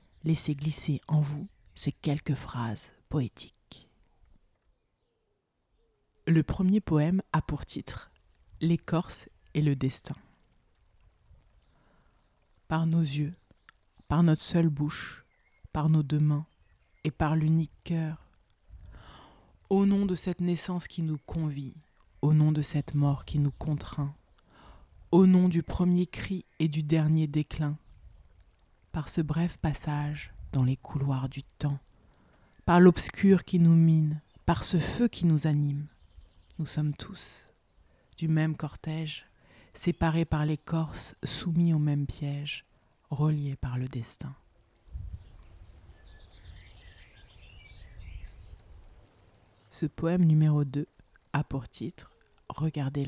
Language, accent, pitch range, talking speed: French, French, 100-160 Hz, 115 wpm